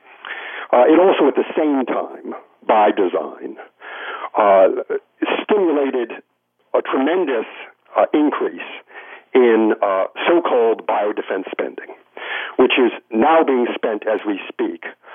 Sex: male